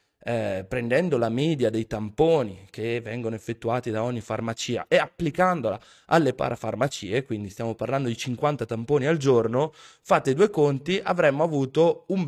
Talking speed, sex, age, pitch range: 145 wpm, male, 20-39, 120-170 Hz